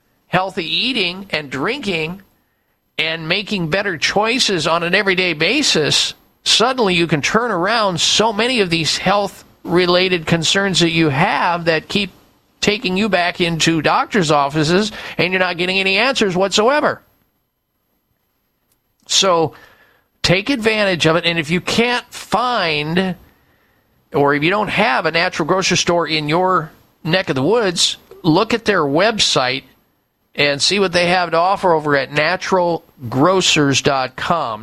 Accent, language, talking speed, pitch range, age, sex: American, English, 140 wpm, 135-185 Hz, 50-69, male